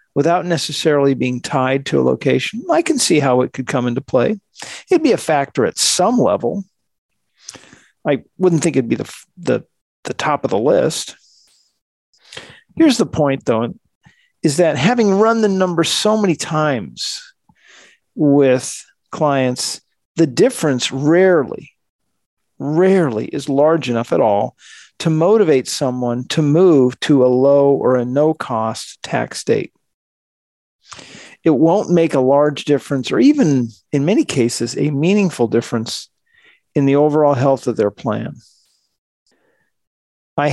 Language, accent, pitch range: English, American, 130-175 Hz